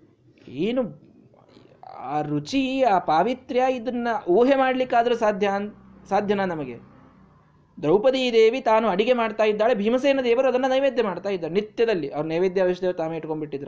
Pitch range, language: 135-205 Hz, Kannada